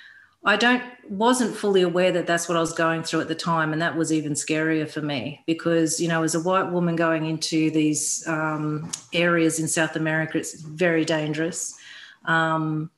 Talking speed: 190 wpm